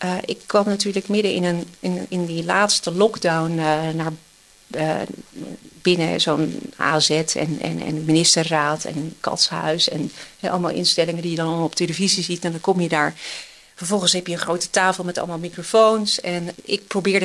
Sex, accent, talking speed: female, Dutch, 175 wpm